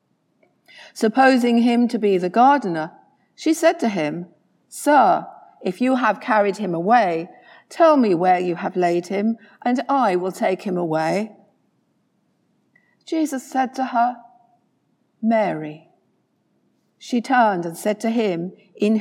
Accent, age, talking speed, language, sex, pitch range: British, 50-69, 135 wpm, English, female, 185-260 Hz